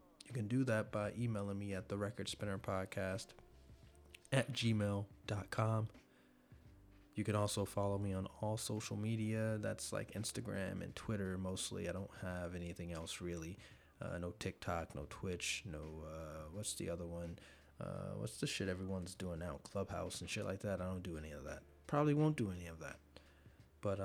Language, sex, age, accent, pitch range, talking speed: English, male, 20-39, American, 90-115 Hz, 175 wpm